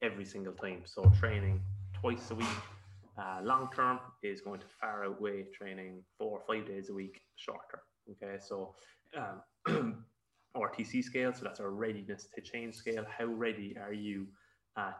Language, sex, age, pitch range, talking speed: English, male, 20-39, 95-105 Hz, 160 wpm